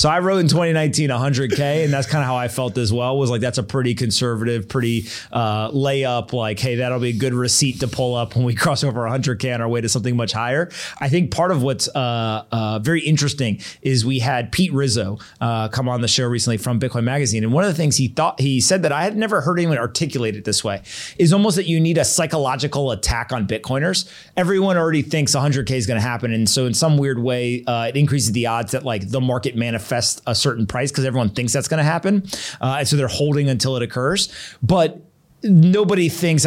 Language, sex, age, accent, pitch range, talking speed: English, male, 30-49, American, 120-155 Hz, 235 wpm